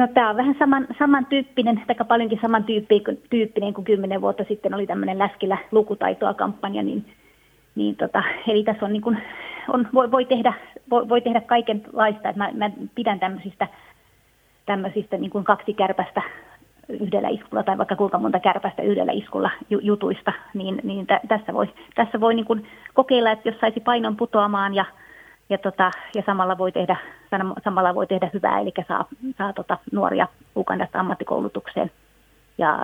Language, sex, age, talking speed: Finnish, female, 30-49, 155 wpm